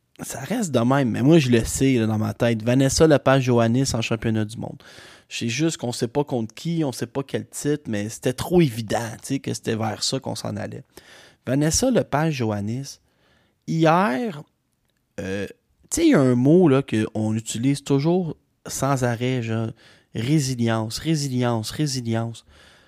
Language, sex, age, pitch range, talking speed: French, male, 30-49, 115-155 Hz, 170 wpm